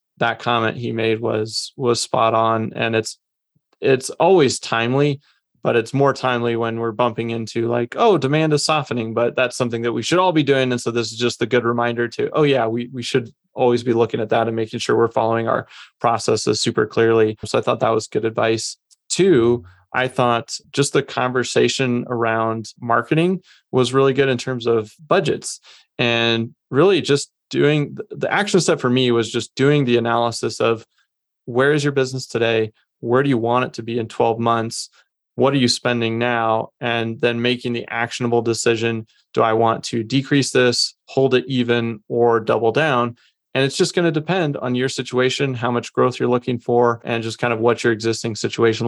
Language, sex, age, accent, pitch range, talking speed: English, male, 20-39, American, 115-130 Hz, 200 wpm